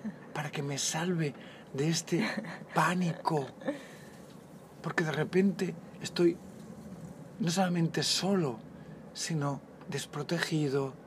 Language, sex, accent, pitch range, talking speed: Spanish, male, Spanish, 150-190 Hz, 85 wpm